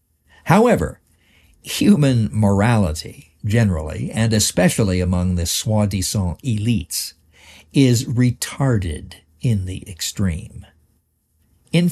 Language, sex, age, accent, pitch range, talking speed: English, male, 60-79, American, 90-125 Hz, 80 wpm